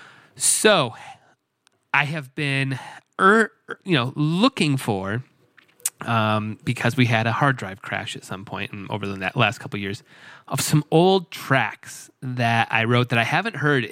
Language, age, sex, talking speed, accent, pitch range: English, 30-49, male, 165 wpm, American, 115-155 Hz